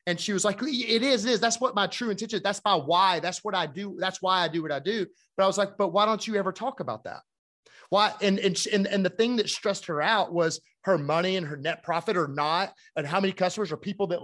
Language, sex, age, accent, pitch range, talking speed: English, male, 30-49, American, 175-215 Hz, 280 wpm